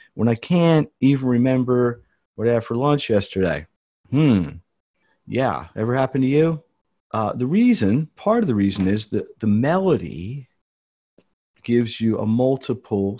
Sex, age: male, 40-59